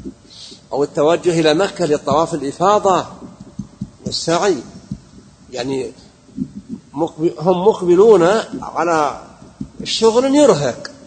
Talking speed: 70 wpm